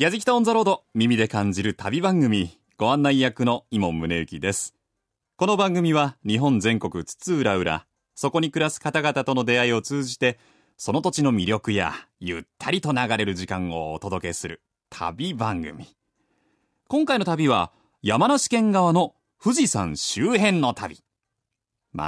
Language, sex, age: Japanese, male, 30-49